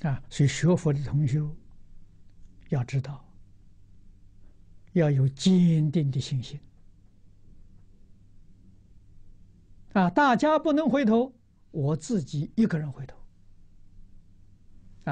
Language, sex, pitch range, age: Chinese, male, 95-150 Hz, 60-79